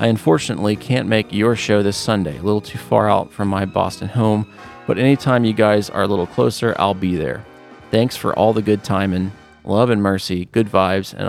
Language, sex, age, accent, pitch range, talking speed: English, male, 30-49, American, 95-110 Hz, 220 wpm